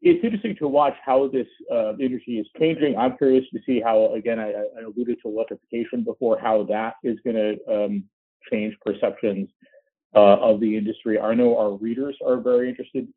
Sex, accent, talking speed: male, American, 185 wpm